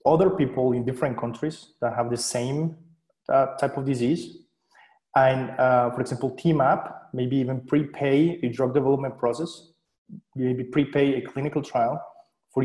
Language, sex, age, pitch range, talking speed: English, male, 30-49, 125-155 Hz, 145 wpm